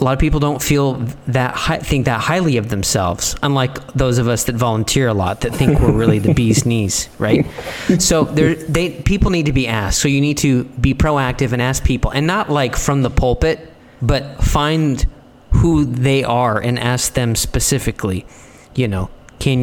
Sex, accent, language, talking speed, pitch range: male, American, English, 195 wpm, 120-150 Hz